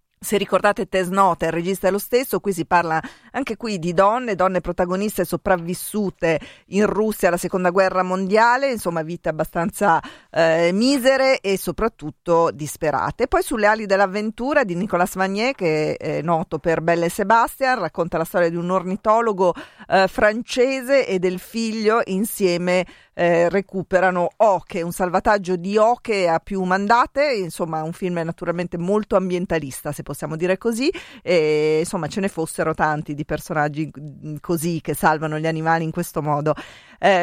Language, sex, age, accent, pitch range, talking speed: Italian, female, 40-59, native, 160-200 Hz, 150 wpm